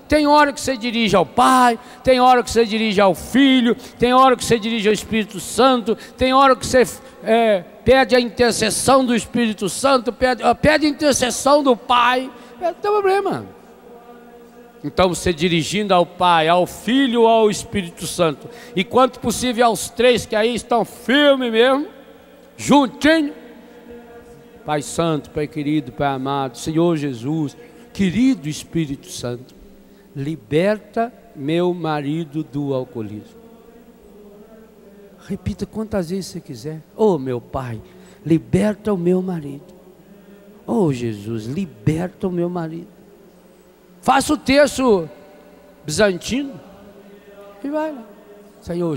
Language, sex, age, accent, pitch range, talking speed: Portuguese, male, 60-79, Brazilian, 160-240 Hz, 125 wpm